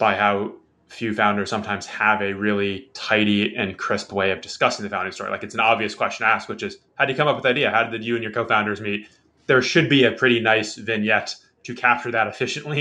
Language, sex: English, male